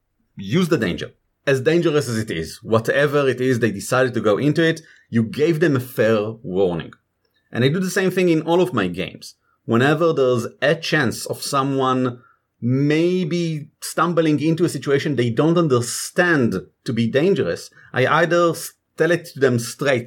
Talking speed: 175 wpm